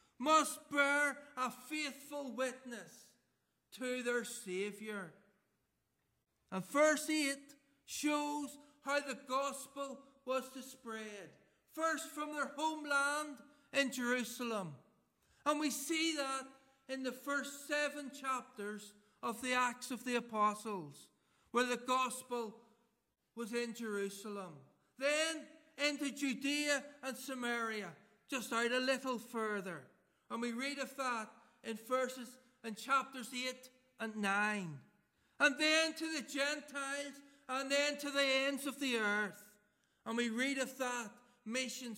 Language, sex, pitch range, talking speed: English, male, 230-280 Hz, 125 wpm